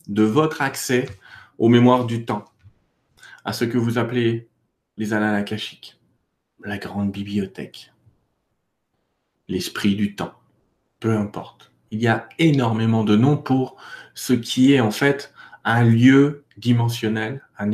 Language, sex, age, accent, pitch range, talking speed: French, male, 40-59, French, 110-140 Hz, 130 wpm